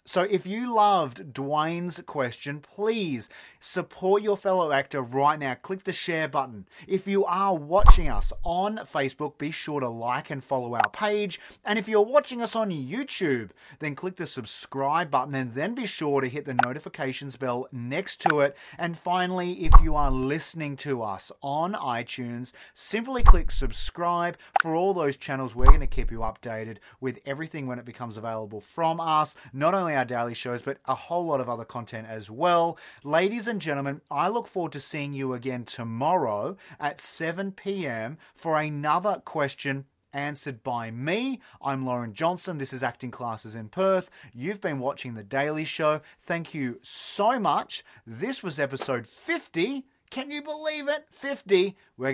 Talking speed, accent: 170 wpm, Australian